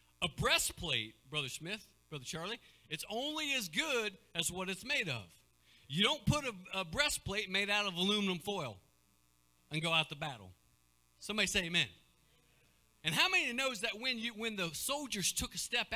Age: 50-69